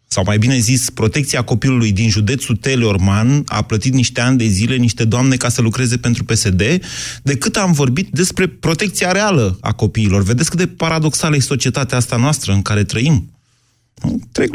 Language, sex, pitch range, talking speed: Romanian, male, 110-140 Hz, 175 wpm